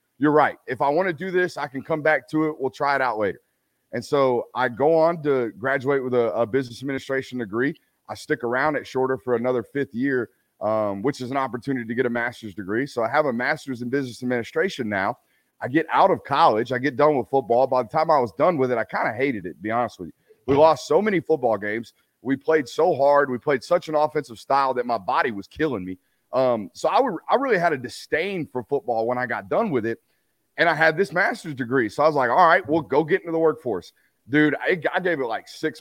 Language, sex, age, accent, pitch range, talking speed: English, male, 30-49, American, 125-155 Hz, 255 wpm